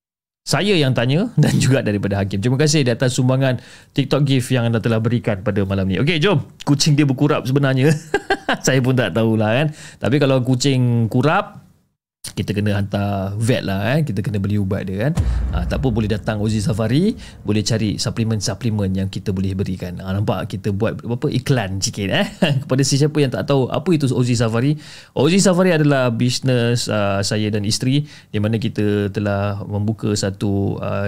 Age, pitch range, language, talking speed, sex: 30-49, 105-140 Hz, Malay, 185 wpm, male